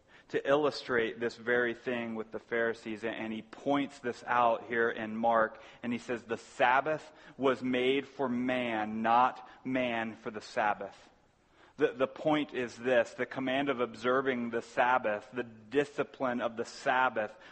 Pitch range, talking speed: 115-135 Hz, 160 wpm